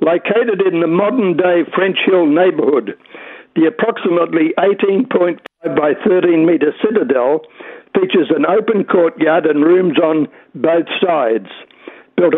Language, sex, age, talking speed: English, male, 60-79, 110 wpm